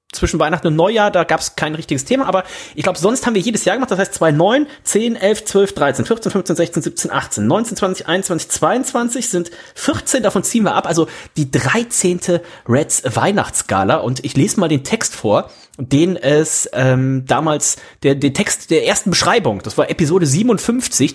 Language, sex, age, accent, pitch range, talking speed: German, male, 30-49, German, 140-200 Hz, 190 wpm